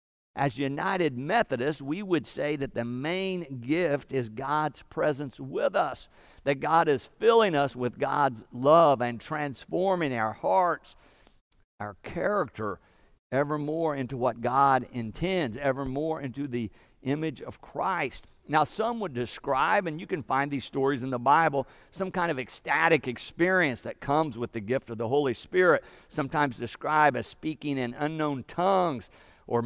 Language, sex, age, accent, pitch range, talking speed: English, male, 50-69, American, 115-150 Hz, 150 wpm